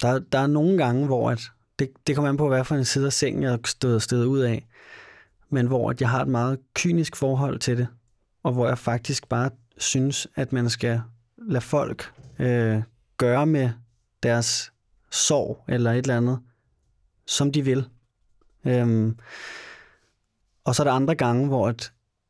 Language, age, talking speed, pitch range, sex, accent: Danish, 30-49, 175 wpm, 120-145 Hz, male, native